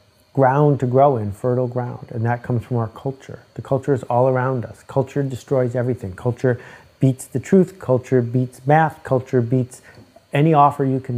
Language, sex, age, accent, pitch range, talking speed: English, male, 50-69, American, 115-135 Hz, 185 wpm